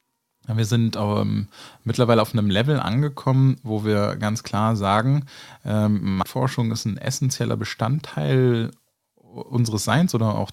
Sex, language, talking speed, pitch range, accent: male, German, 125 wpm, 105-130 Hz, German